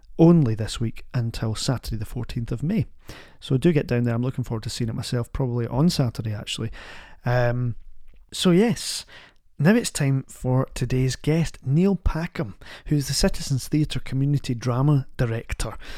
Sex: male